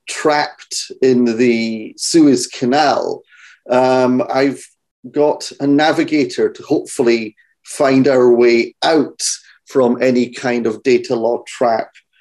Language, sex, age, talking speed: English, male, 40-59, 115 wpm